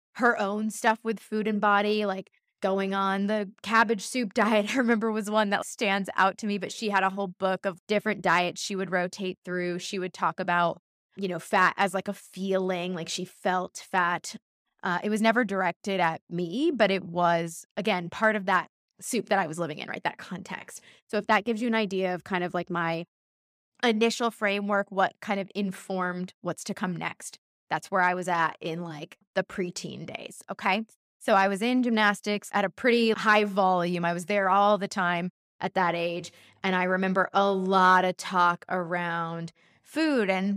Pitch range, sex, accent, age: 185-220 Hz, female, American, 20-39